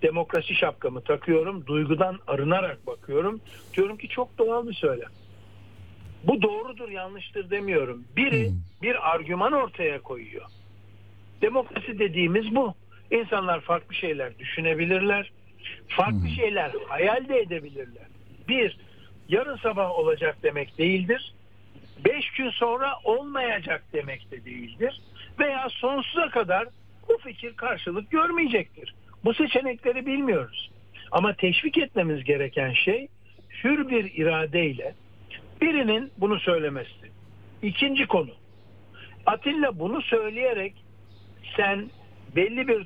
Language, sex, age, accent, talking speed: Turkish, male, 60-79, native, 105 wpm